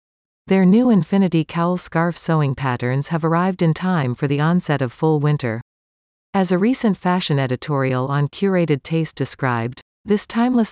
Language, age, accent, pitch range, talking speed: English, 40-59, American, 135-180 Hz, 155 wpm